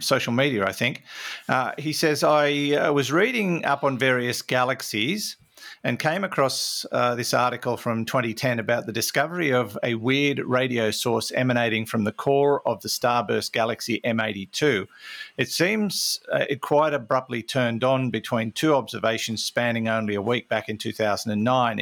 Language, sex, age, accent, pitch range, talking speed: English, male, 50-69, Australian, 115-140 Hz, 160 wpm